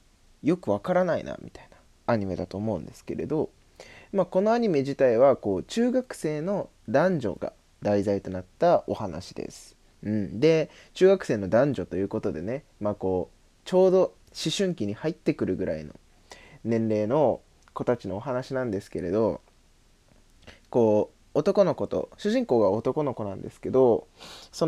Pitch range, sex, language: 95-145 Hz, male, Japanese